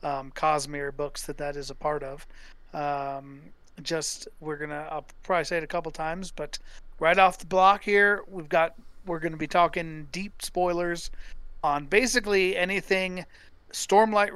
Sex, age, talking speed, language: male, 40-59, 160 wpm, English